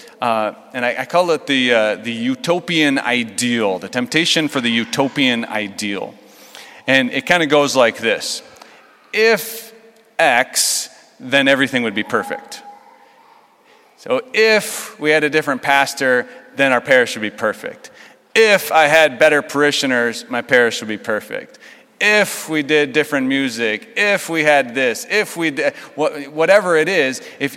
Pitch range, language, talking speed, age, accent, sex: 130-175 Hz, English, 155 wpm, 30-49, American, male